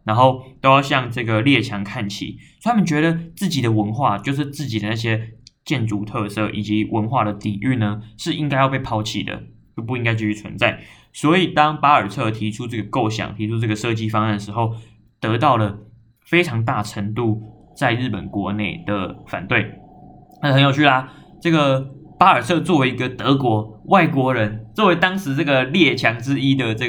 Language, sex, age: Chinese, male, 20-39